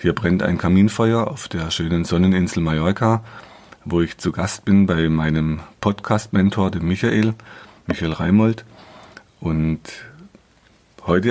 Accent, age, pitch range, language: German, 40-59, 90-110 Hz, German